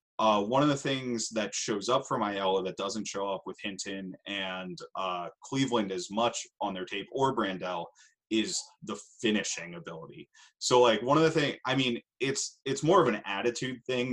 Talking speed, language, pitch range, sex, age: 190 wpm, English, 100-120 Hz, male, 20-39